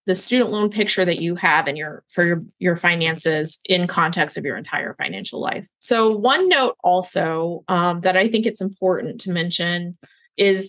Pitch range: 180-220 Hz